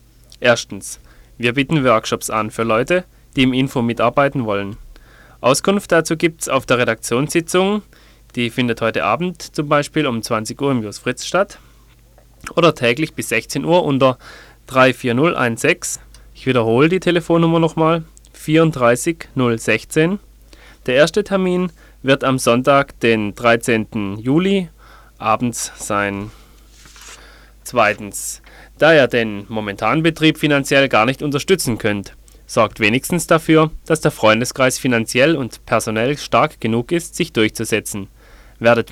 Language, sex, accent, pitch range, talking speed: German, male, German, 115-155 Hz, 125 wpm